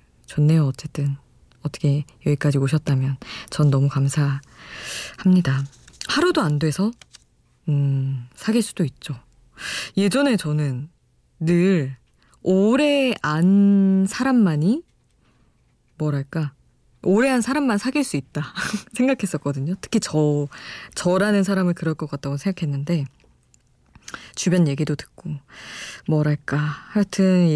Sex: female